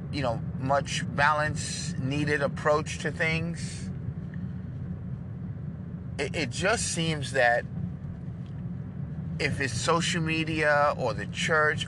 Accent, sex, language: American, male, English